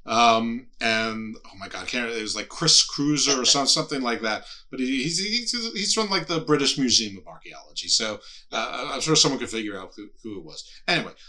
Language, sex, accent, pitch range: English, male, American, 110-150 Hz